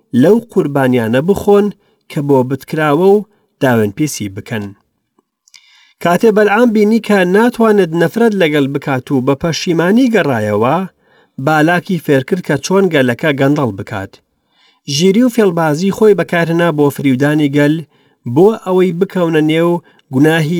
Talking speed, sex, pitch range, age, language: 120 wpm, male, 130-190 Hz, 40-59, English